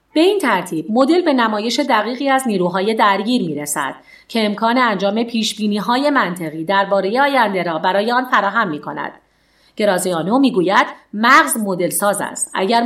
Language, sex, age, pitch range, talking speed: Persian, female, 40-59, 190-275 Hz, 145 wpm